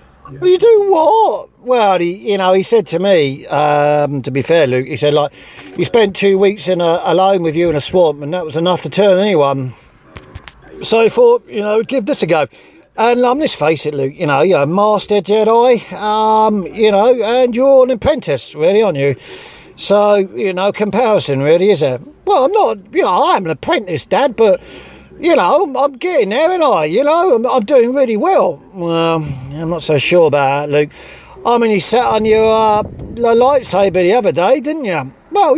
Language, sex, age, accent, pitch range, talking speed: English, male, 50-69, British, 165-245 Hz, 205 wpm